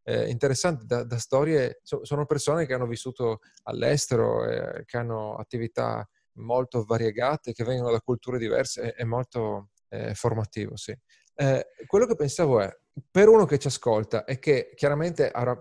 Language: Italian